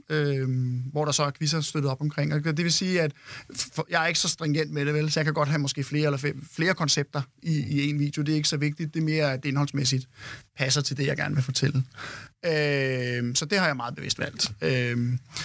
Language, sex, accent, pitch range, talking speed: Danish, male, native, 135-160 Hz, 250 wpm